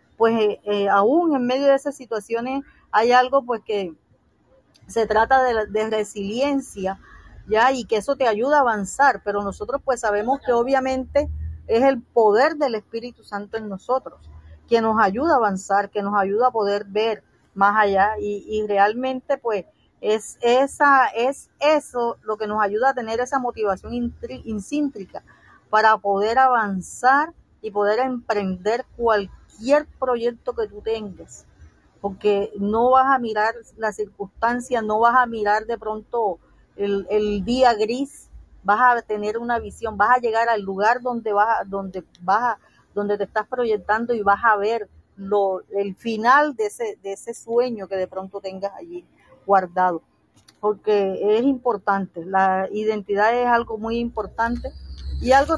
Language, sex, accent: Spanish, female, American